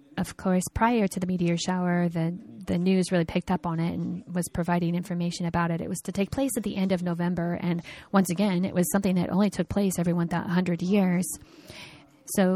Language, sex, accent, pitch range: Japanese, female, American, 170-190 Hz